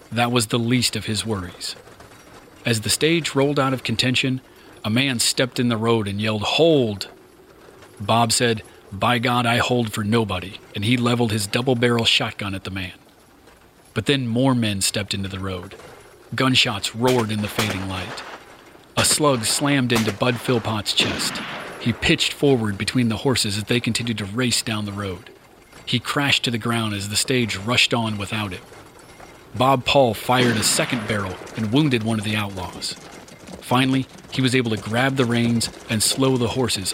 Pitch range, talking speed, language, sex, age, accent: 100-125 Hz, 180 wpm, English, male, 40-59, American